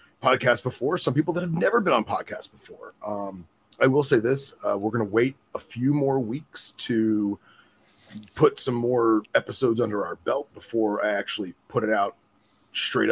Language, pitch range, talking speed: English, 105-125 Hz, 185 wpm